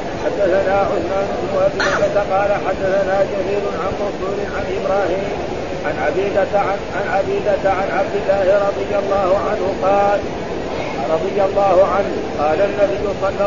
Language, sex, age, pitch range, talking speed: Arabic, male, 50-69, 195-200 Hz, 120 wpm